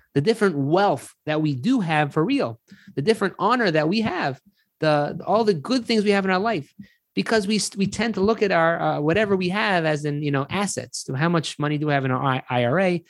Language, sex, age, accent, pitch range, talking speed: English, male, 30-49, American, 130-180 Hz, 240 wpm